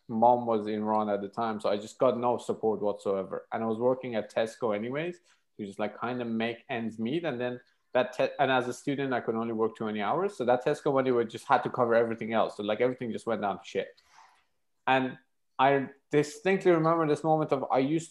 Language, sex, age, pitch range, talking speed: English, male, 20-39, 110-140 Hz, 240 wpm